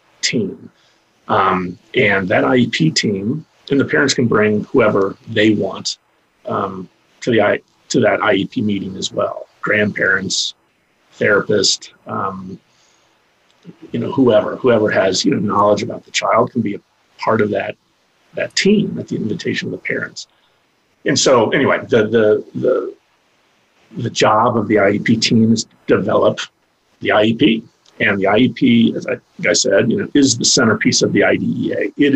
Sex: male